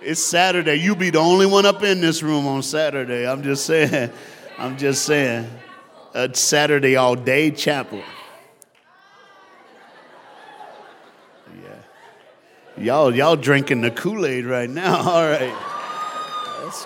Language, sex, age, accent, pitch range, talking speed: English, male, 50-69, American, 115-160 Hz, 125 wpm